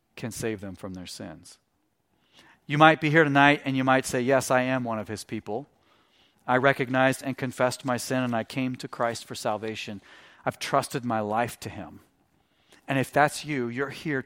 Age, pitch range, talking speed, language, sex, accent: 40-59, 115-140 Hz, 200 wpm, English, male, American